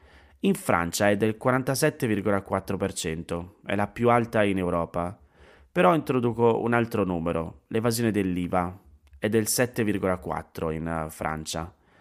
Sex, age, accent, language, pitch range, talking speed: male, 30-49, native, Italian, 85-115 Hz, 115 wpm